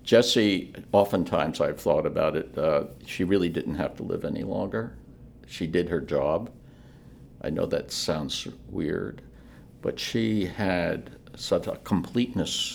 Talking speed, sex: 140 wpm, male